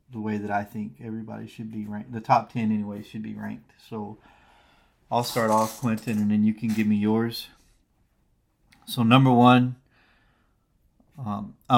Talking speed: 165 wpm